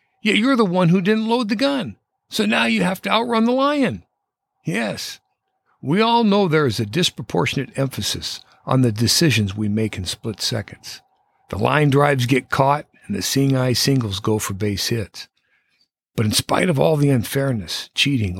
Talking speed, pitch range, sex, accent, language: 180 wpm, 110-170 Hz, male, American, English